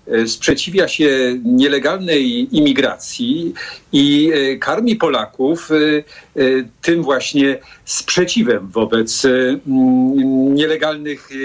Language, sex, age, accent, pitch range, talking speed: Polish, male, 50-69, native, 145-220 Hz, 65 wpm